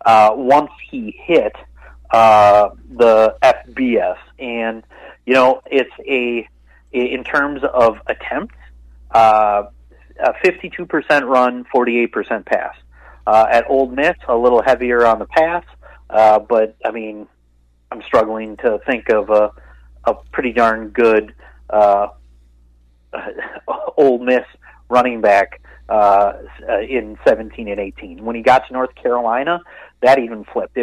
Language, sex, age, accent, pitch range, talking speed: English, male, 40-59, American, 105-125 Hz, 125 wpm